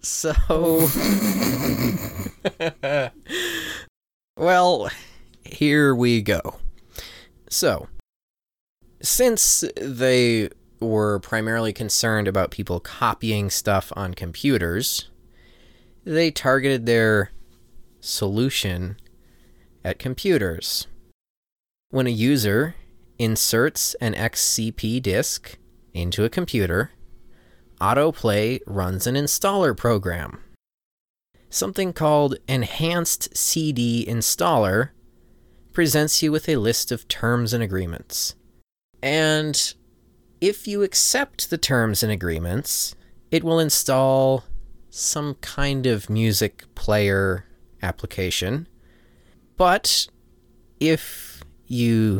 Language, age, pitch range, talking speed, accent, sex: English, 20-39, 100-150 Hz, 85 wpm, American, male